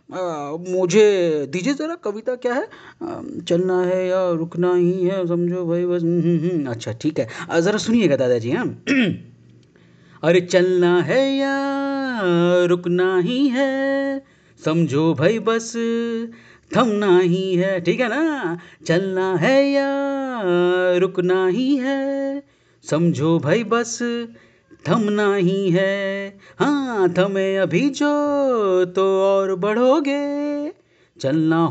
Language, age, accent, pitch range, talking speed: Hindi, 30-49, native, 180-250 Hz, 115 wpm